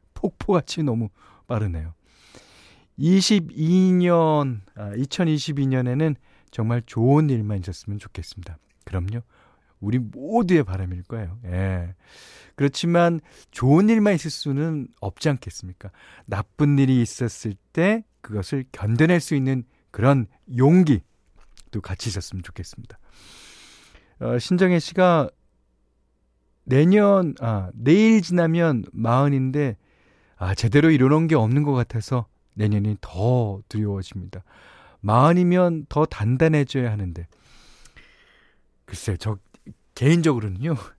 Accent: native